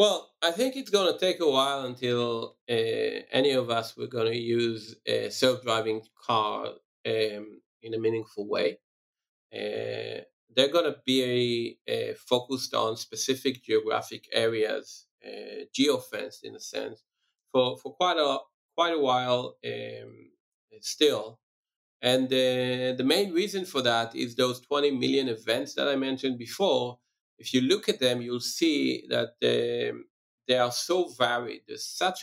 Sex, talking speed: male, 155 wpm